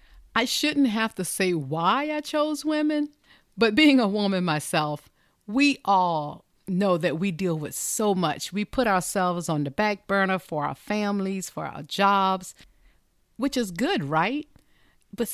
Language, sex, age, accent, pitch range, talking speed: English, female, 40-59, American, 165-220 Hz, 160 wpm